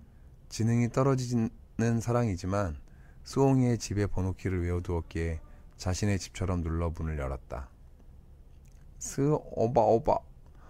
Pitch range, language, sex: 70-110 Hz, Korean, male